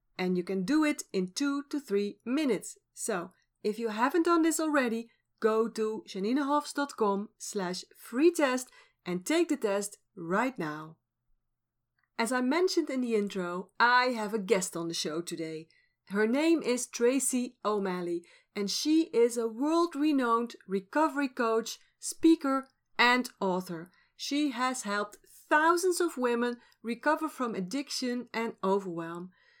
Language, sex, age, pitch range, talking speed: Dutch, female, 40-59, 205-290 Hz, 140 wpm